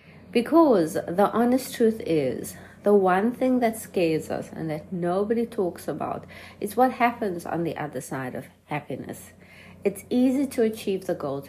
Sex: female